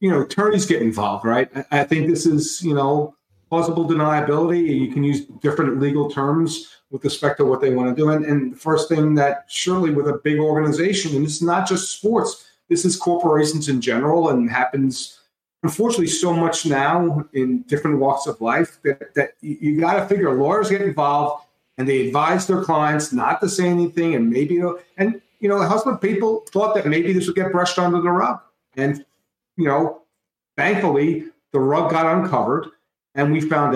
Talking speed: 195 wpm